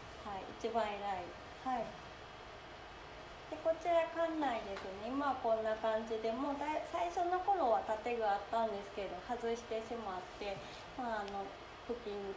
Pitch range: 200-275 Hz